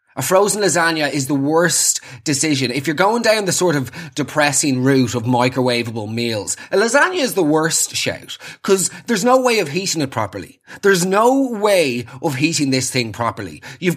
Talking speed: 180 wpm